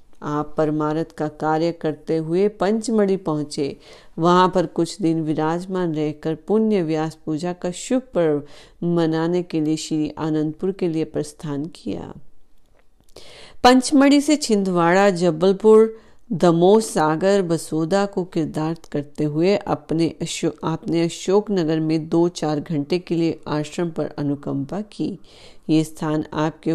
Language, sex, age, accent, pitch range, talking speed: Hindi, female, 40-59, native, 155-190 Hz, 130 wpm